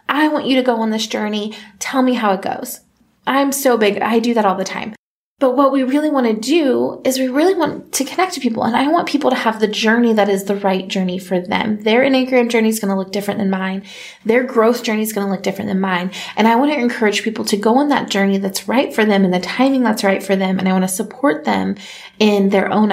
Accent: American